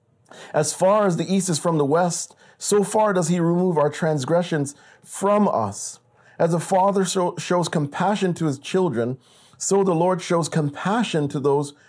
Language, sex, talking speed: English, male, 170 wpm